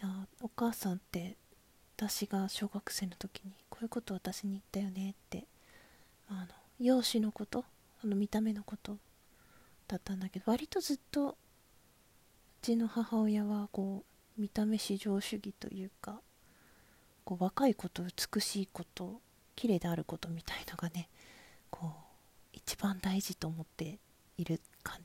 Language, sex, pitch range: Japanese, female, 185-215 Hz